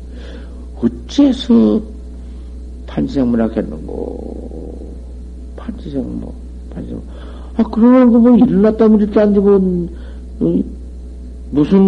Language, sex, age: Korean, male, 60-79